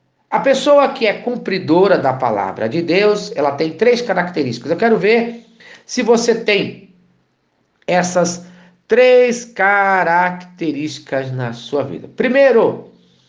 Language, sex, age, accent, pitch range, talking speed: Portuguese, male, 50-69, Brazilian, 145-230 Hz, 115 wpm